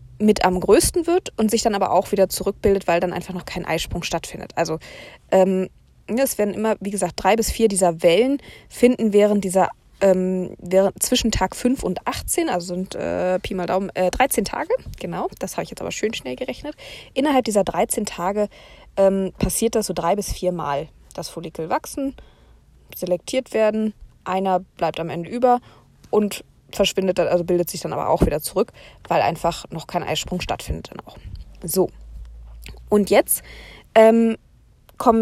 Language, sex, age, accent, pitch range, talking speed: German, female, 20-39, German, 175-225 Hz, 175 wpm